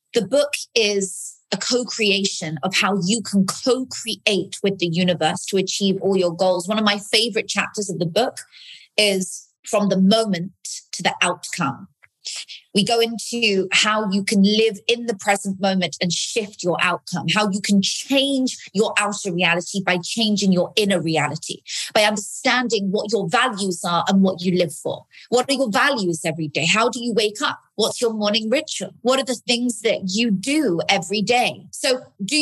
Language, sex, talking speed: English, female, 180 wpm